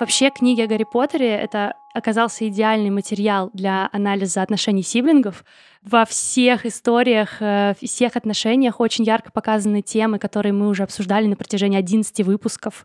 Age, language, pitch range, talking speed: 20-39, Russian, 210-245 Hz, 140 wpm